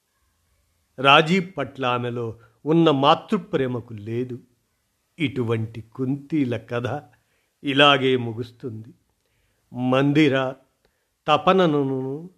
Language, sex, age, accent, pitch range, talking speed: Telugu, male, 50-69, native, 115-155 Hz, 65 wpm